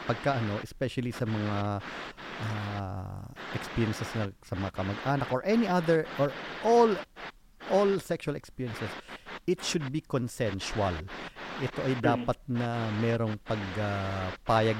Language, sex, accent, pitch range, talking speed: Filipino, male, native, 100-120 Hz, 110 wpm